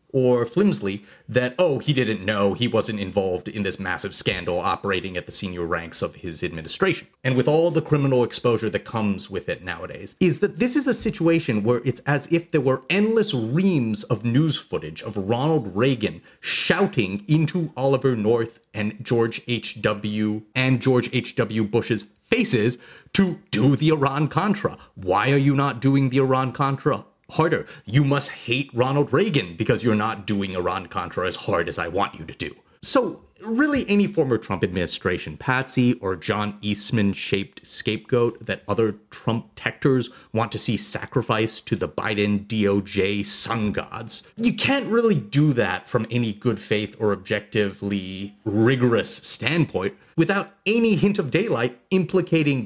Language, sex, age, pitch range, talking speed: English, male, 30-49, 105-150 Hz, 155 wpm